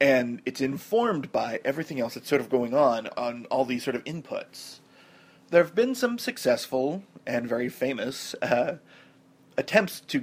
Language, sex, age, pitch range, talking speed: English, male, 30-49, 125-185 Hz, 165 wpm